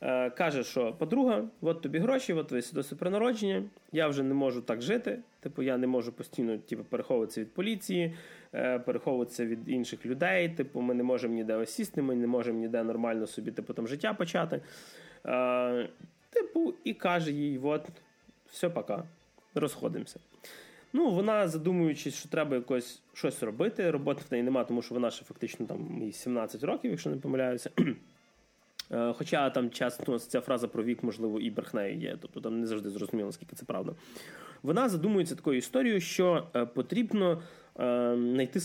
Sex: male